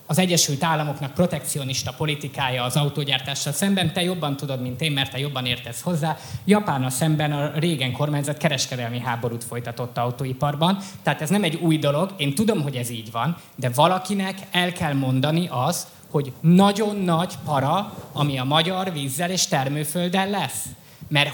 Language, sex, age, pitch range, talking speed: English, male, 20-39, 140-180 Hz, 165 wpm